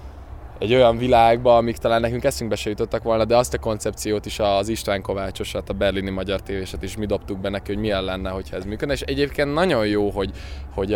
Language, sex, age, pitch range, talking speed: Hungarian, male, 20-39, 95-110 Hz, 215 wpm